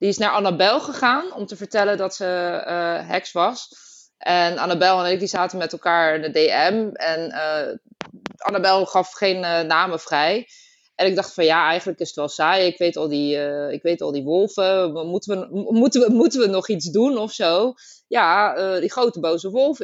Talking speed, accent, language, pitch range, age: 210 wpm, Dutch, Dutch, 175-225 Hz, 20-39